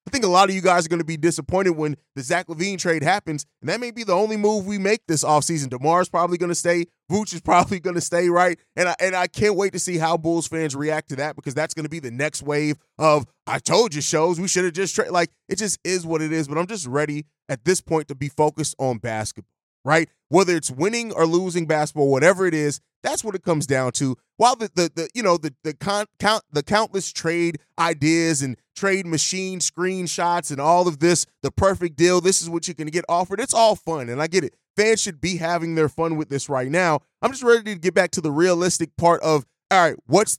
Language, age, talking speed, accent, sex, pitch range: English, 20-39, 250 wpm, American, male, 155-185 Hz